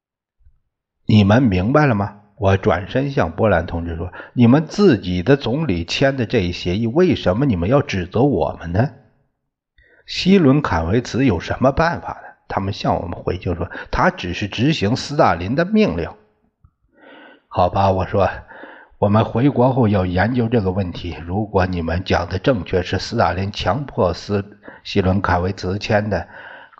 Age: 60-79